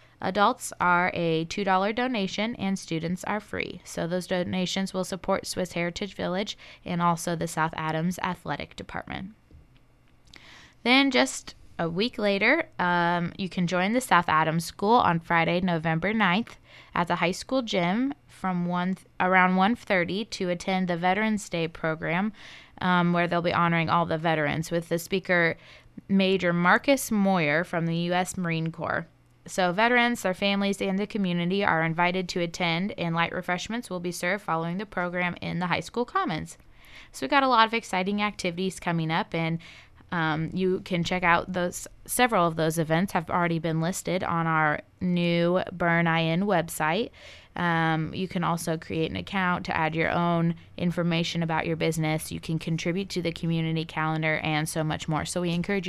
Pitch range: 165-190 Hz